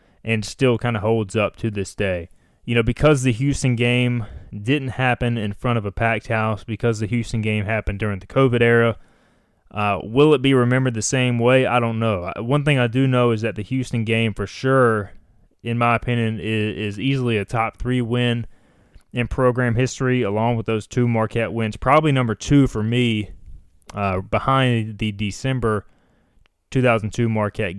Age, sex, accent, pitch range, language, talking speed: 20-39, male, American, 105-125 Hz, English, 185 wpm